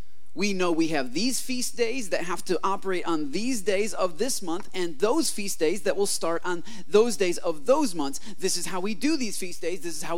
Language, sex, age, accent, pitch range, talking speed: English, male, 30-49, American, 155-245 Hz, 240 wpm